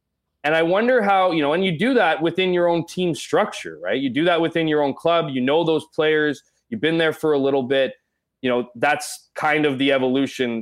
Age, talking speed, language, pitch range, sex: 20-39, 230 wpm, English, 130-175 Hz, male